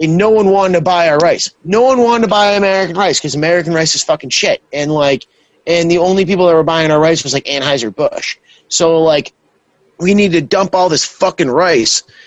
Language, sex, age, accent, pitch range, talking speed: English, male, 30-49, American, 150-185 Hz, 225 wpm